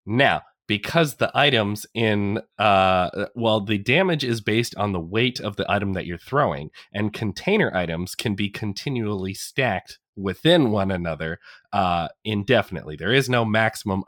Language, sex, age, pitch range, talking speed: English, male, 20-39, 105-140 Hz, 155 wpm